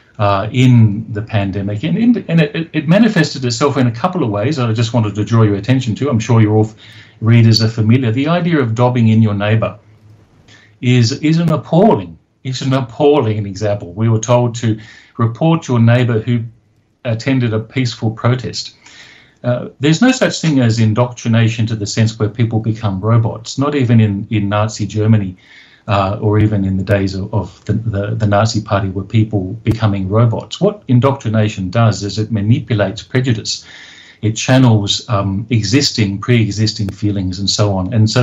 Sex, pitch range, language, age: male, 105-125 Hz, English, 50-69